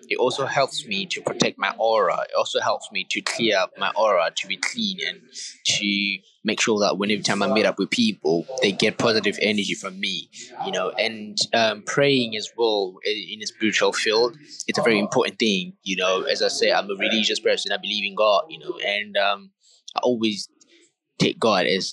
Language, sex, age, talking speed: English, male, 20-39, 210 wpm